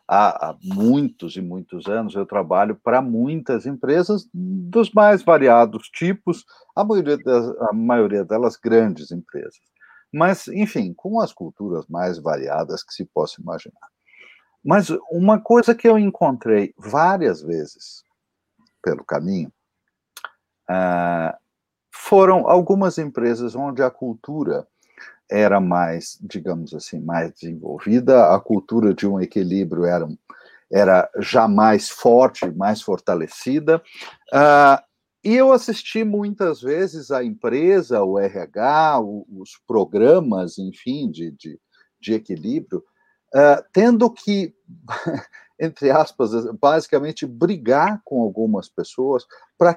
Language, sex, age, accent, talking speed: Portuguese, male, 60-79, Brazilian, 110 wpm